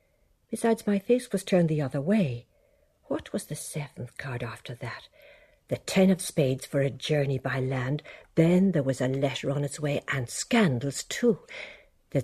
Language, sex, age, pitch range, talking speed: English, female, 60-79, 135-205 Hz, 175 wpm